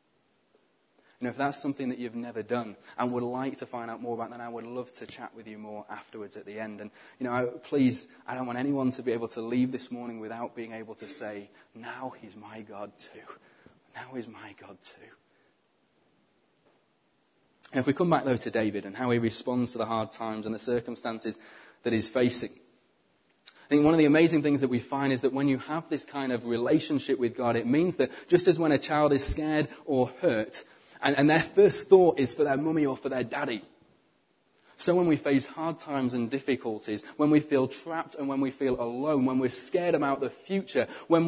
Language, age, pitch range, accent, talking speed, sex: English, 20-39, 115-145 Hz, British, 220 wpm, male